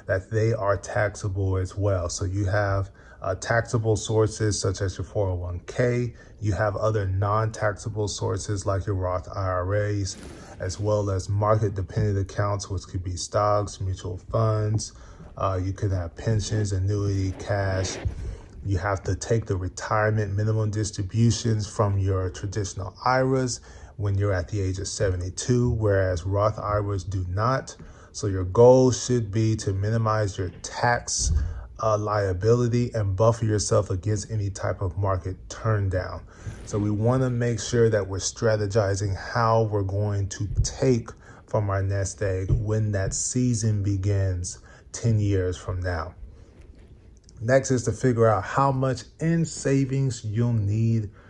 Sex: male